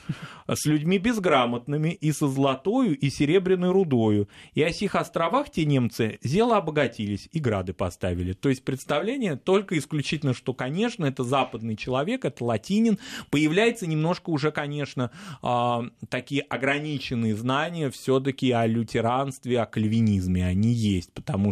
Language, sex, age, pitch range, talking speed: Russian, male, 20-39, 115-155 Hz, 135 wpm